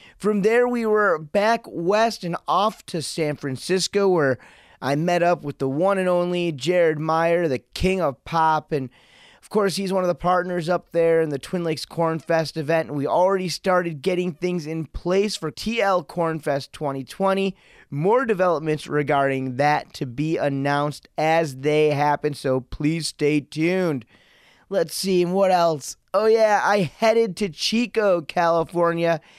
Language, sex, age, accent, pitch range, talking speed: English, male, 30-49, American, 155-190 Hz, 165 wpm